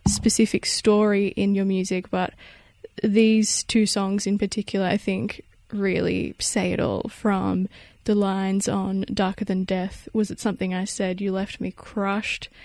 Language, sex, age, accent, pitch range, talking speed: English, female, 20-39, Australian, 195-220 Hz, 155 wpm